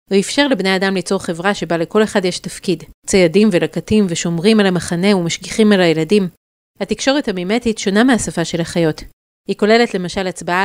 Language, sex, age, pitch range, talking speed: Hebrew, female, 30-49, 170-210 Hz, 165 wpm